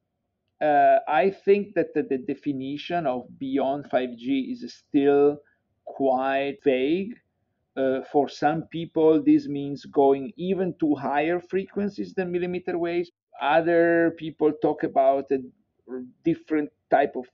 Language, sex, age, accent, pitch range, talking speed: English, male, 50-69, Italian, 130-160 Hz, 125 wpm